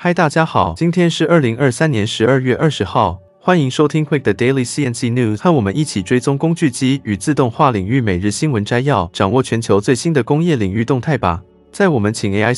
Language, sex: Chinese, male